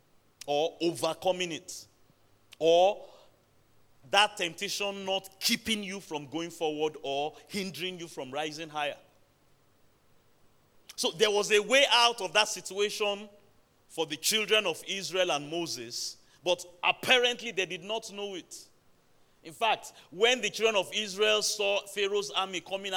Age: 40-59